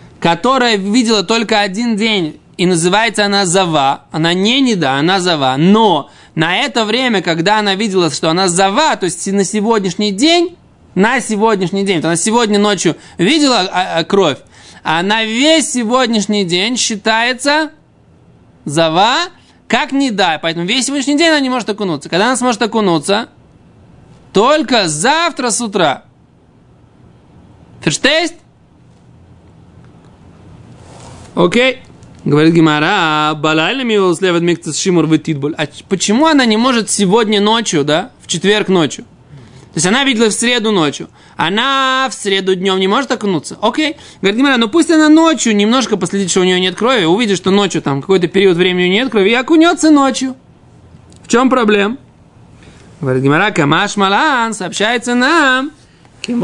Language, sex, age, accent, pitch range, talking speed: Russian, male, 20-39, native, 180-245 Hz, 140 wpm